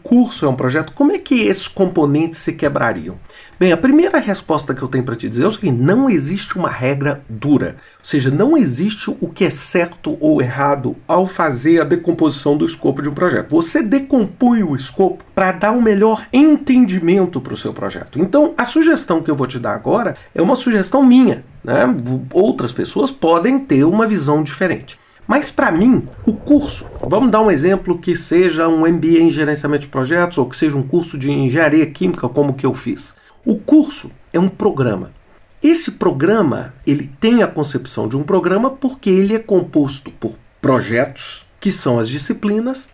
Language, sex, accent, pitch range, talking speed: Portuguese, male, Brazilian, 145-235 Hz, 185 wpm